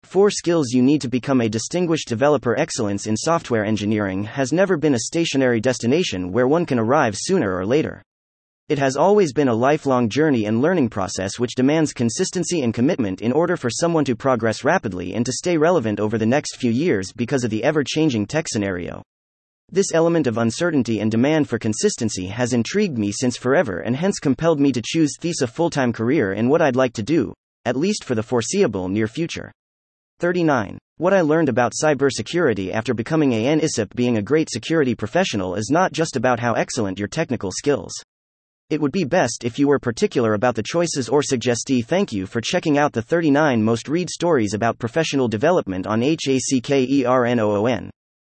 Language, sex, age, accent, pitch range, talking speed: English, male, 30-49, American, 110-155 Hz, 185 wpm